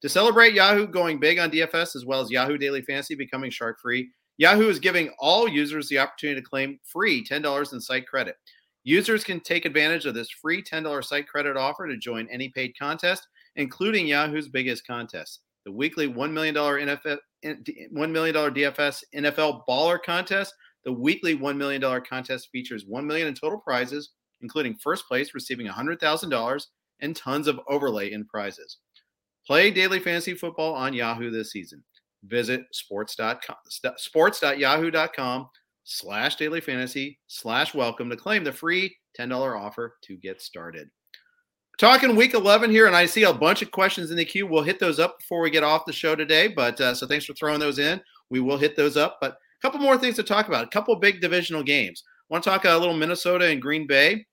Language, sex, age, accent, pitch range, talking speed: English, male, 40-59, American, 130-175 Hz, 185 wpm